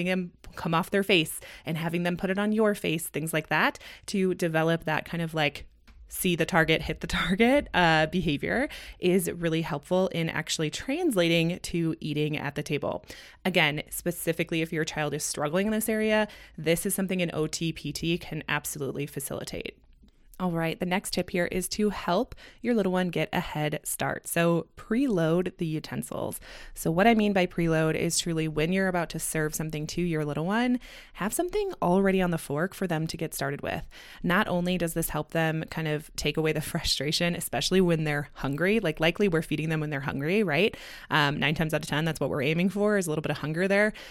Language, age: English, 20-39